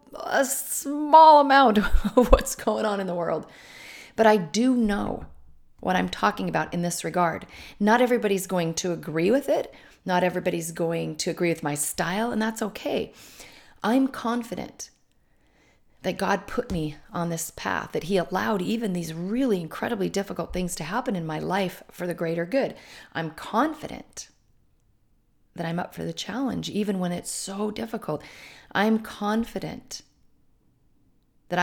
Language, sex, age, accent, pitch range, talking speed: English, female, 40-59, American, 175-235 Hz, 155 wpm